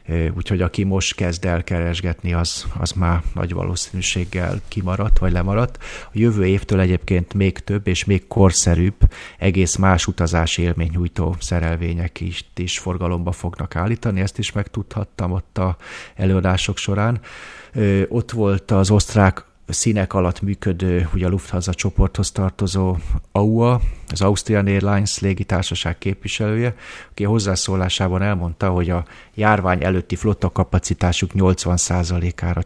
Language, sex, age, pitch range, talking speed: Hungarian, male, 30-49, 85-100 Hz, 125 wpm